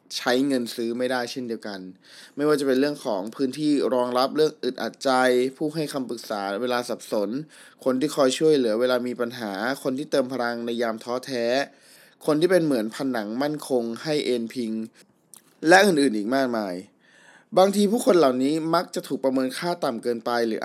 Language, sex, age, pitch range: Thai, male, 20-39, 120-155 Hz